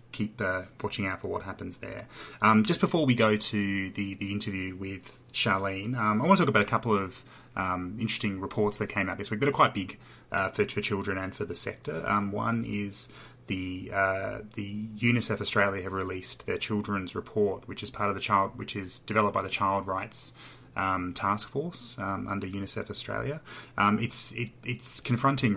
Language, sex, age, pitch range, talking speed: English, male, 30-49, 95-115 Hz, 200 wpm